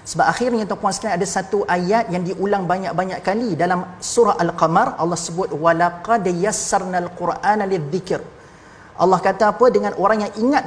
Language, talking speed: Malayalam, 155 wpm